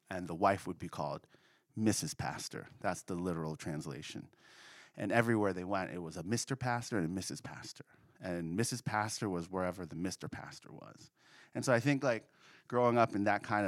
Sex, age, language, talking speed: male, 30-49, English, 195 wpm